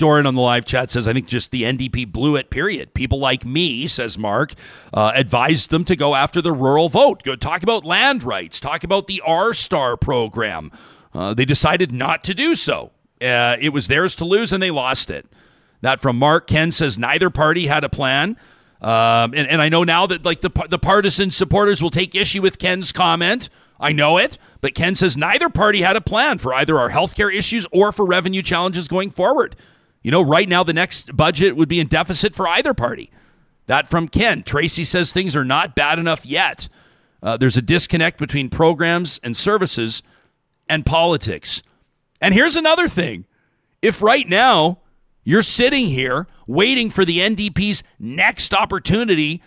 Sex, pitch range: male, 140-190 Hz